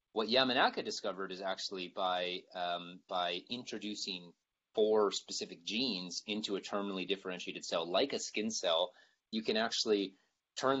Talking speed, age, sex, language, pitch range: 140 wpm, 30-49, male, English, 90-100 Hz